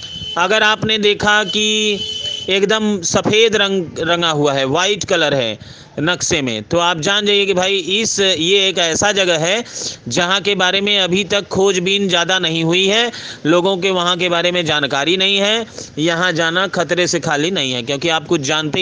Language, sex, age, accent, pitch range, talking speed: Hindi, male, 40-59, native, 165-205 Hz, 185 wpm